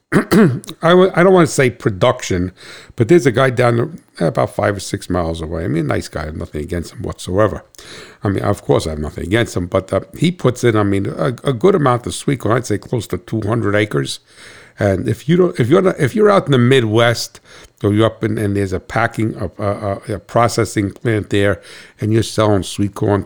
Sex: male